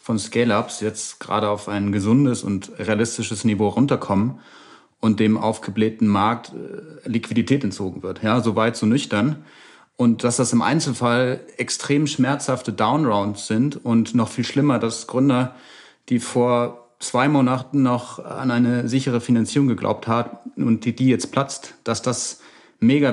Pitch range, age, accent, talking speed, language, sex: 115-140 Hz, 40-59, German, 150 wpm, German, male